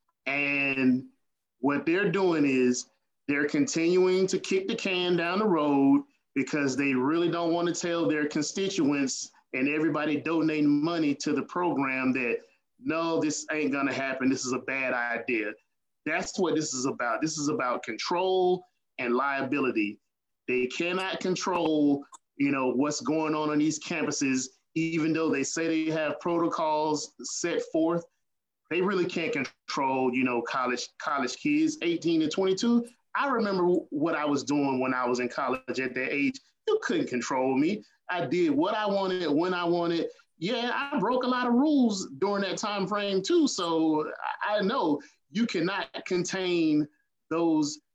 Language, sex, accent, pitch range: Japanese, male, American, 140-190 Hz